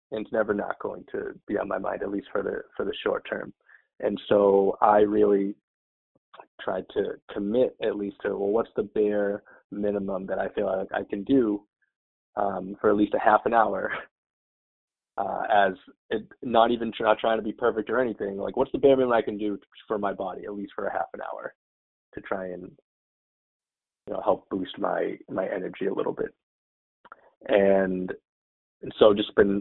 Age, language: 30-49, English